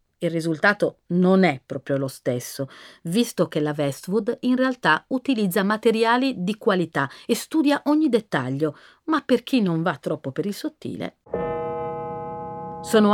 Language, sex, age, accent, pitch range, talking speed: Italian, female, 40-59, native, 165-250 Hz, 140 wpm